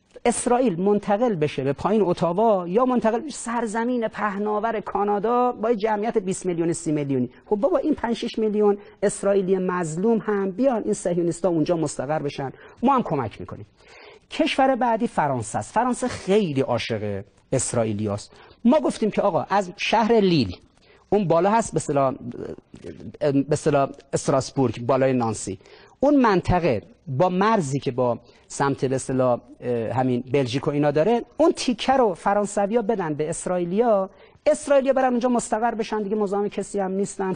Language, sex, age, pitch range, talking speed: Persian, male, 40-59, 135-225 Hz, 155 wpm